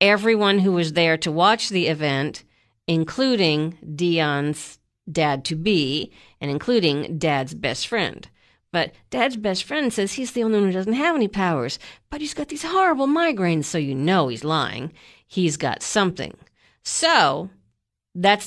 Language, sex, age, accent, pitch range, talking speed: English, female, 50-69, American, 160-225 Hz, 155 wpm